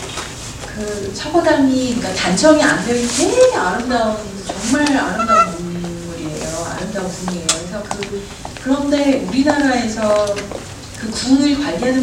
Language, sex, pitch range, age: Korean, female, 190-265 Hz, 30-49